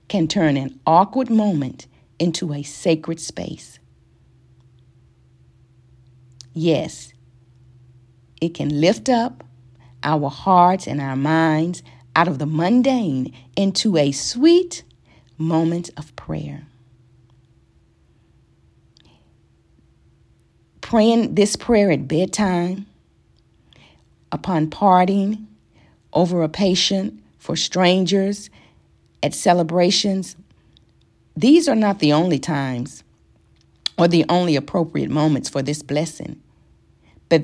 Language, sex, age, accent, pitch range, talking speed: English, female, 40-59, American, 125-180 Hz, 95 wpm